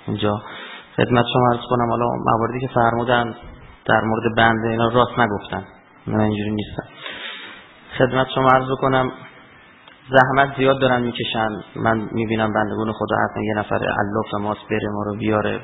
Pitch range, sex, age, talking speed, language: 110-130 Hz, male, 30-49, 150 wpm, Persian